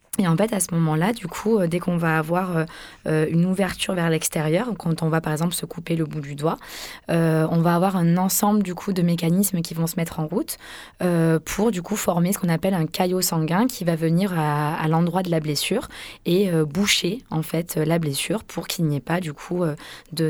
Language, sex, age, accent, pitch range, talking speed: French, female, 20-39, French, 160-185 Hz, 235 wpm